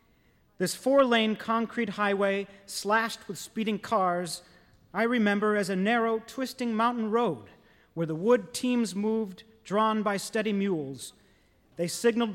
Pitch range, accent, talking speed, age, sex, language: 175-220 Hz, American, 130 wpm, 40-59, male, English